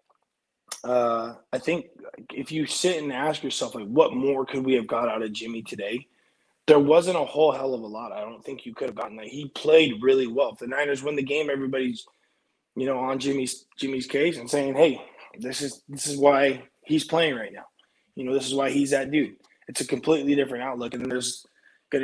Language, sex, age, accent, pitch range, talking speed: English, male, 20-39, American, 125-150 Hz, 220 wpm